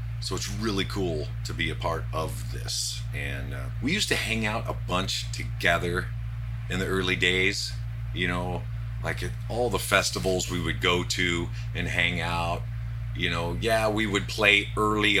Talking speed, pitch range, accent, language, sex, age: 180 wpm, 110-120 Hz, American, English, male, 40-59